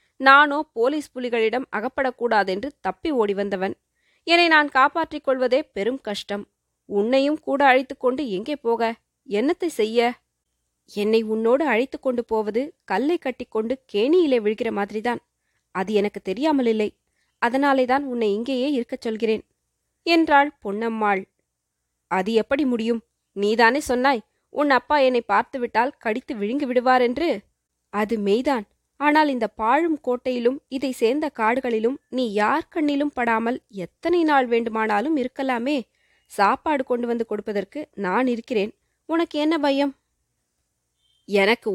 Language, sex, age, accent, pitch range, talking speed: Tamil, female, 20-39, native, 215-280 Hz, 115 wpm